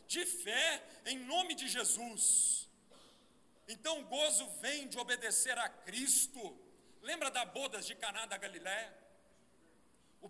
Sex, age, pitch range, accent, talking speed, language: male, 50-69, 230-305 Hz, Brazilian, 130 wpm, Portuguese